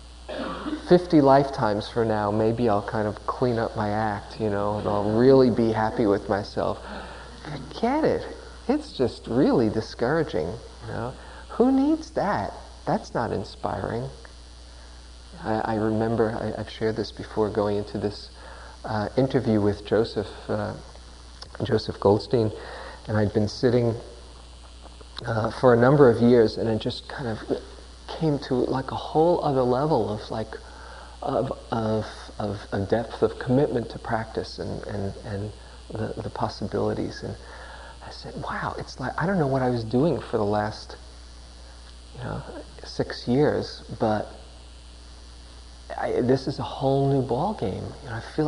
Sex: male